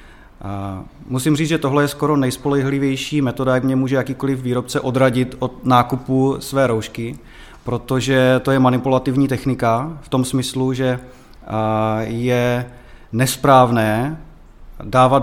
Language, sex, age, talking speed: Czech, male, 30-49, 120 wpm